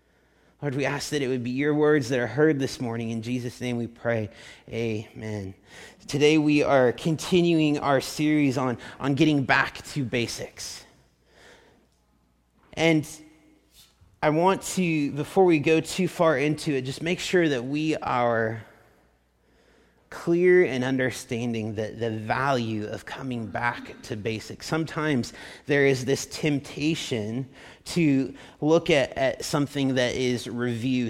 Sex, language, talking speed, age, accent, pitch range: male, English, 140 wpm, 30-49, American, 125-165 Hz